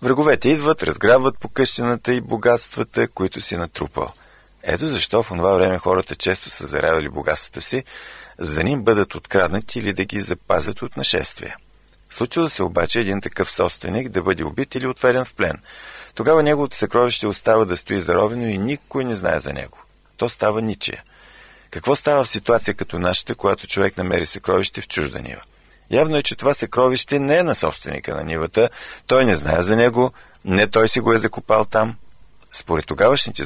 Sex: male